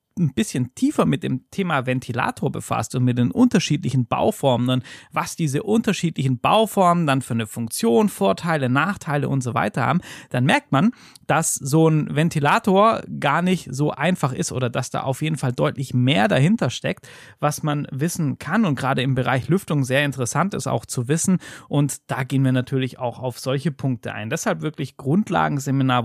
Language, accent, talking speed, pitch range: German, German, 175 wpm, 130-170 Hz